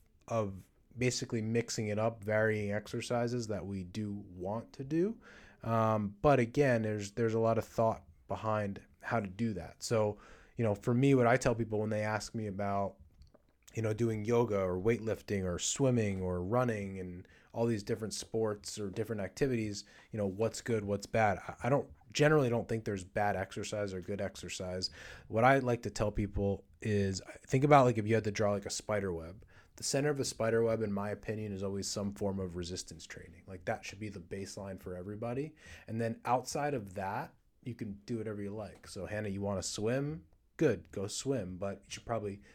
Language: English